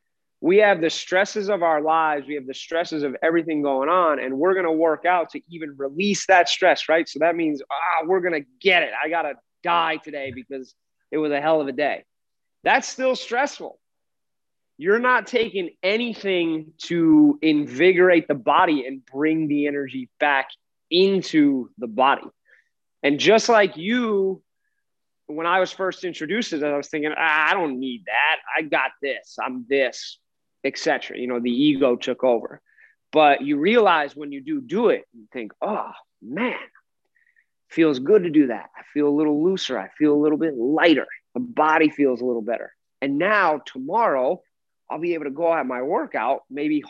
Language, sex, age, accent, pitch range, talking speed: English, male, 30-49, American, 145-190 Hz, 185 wpm